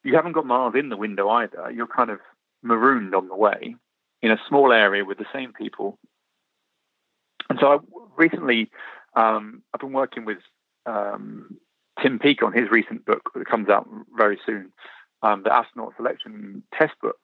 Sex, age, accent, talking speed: male, 30-49, British, 170 wpm